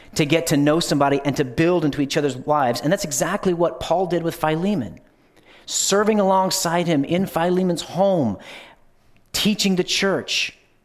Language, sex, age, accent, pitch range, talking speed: English, male, 40-59, American, 130-170 Hz, 160 wpm